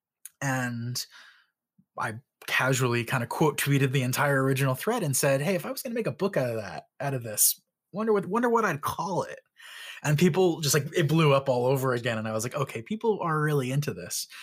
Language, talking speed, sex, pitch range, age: English, 230 wpm, male, 125-160 Hz, 20-39